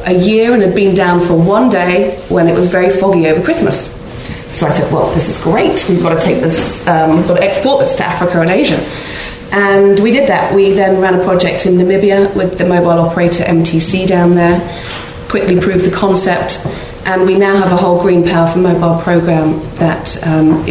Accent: British